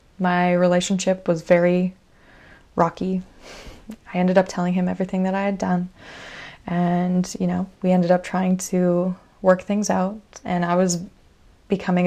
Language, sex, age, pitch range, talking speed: English, female, 20-39, 175-200 Hz, 150 wpm